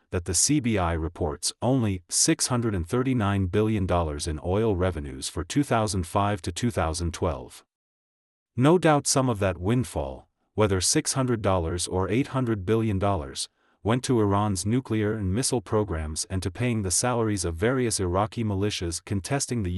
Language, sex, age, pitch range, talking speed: English, male, 40-59, 90-120 Hz, 130 wpm